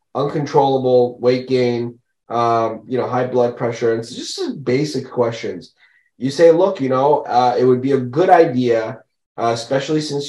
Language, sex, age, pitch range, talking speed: English, male, 20-39, 120-145 Hz, 165 wpm